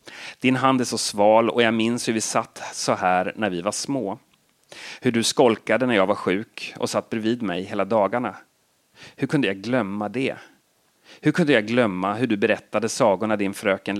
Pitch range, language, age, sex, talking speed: 95-115 Hz, Swedish, 30-49, male, 195 wpm